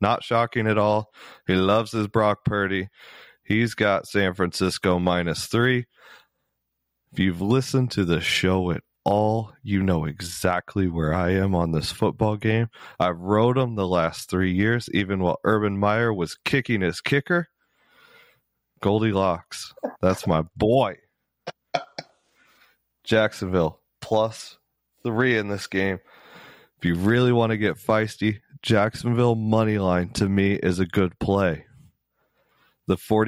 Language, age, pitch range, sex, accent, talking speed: English, 30-49, 95-110 Hz, male, American, 135 wpm